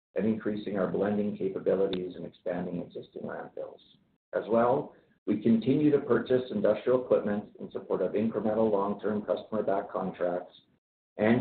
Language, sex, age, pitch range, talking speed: English, male, 50-69, 95-115 Hz, 135 wpm